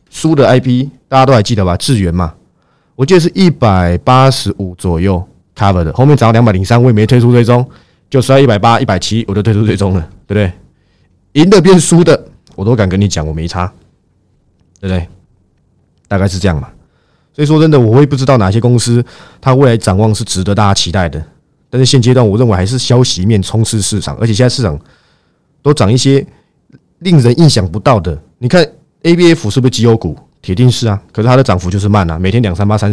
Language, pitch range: Chinese, 95-130 Hz